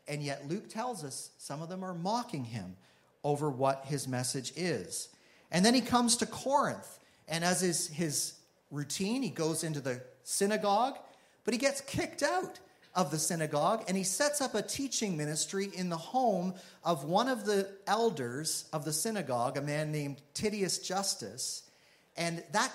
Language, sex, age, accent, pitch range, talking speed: English, male, 40-59, American, 145-205 Hz, 170 wpm